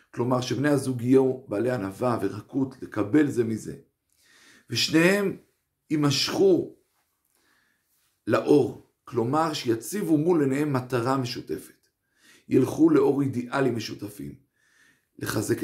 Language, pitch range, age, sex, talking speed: Hebrew, 120-175 Hz, 50-69, male, 90 wpm